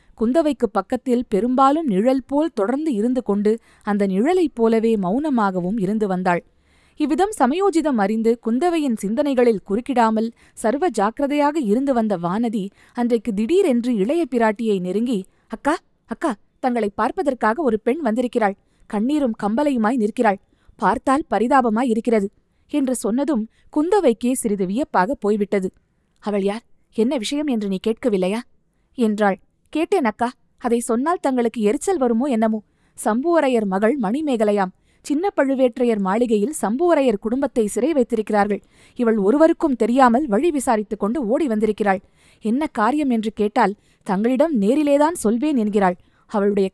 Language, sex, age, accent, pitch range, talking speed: Tamil, female, 20-39, native, 210-275 Hz, 110 wpm